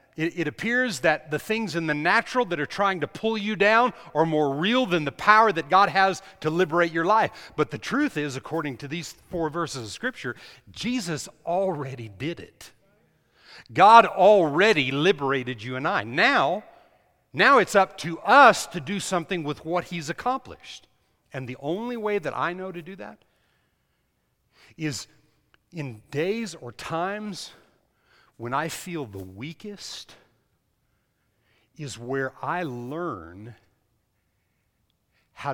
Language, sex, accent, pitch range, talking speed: English, male, American, 120-180 Hz, 145 wpm